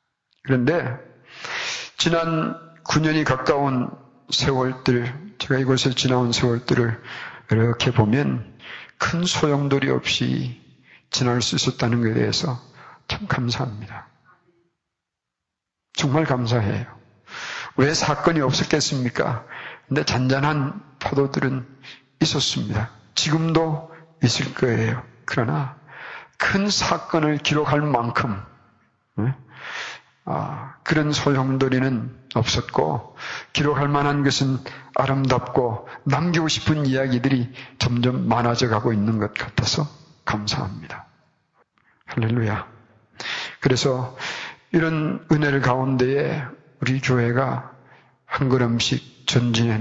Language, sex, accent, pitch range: Korean, male, native, 120-150 Hz